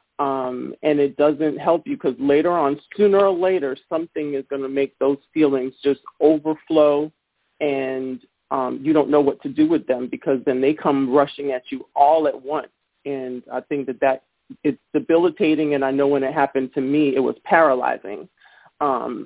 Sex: male